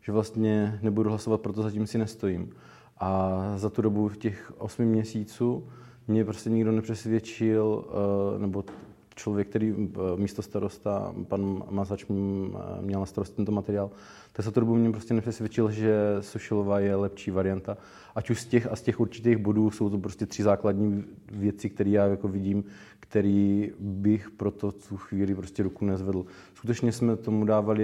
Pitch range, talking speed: 100-115 Hz, 160 wpm